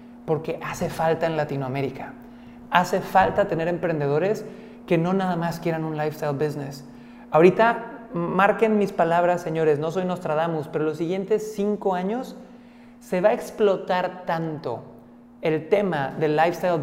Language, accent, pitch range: Spanish, Mexican, 165-210 Hz